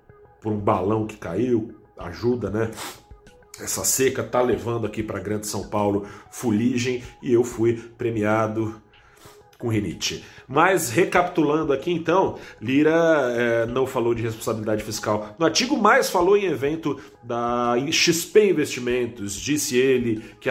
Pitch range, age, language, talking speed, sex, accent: 105-130 Hz, 40-59, Portuguese, 135 wpm, male, Brazilian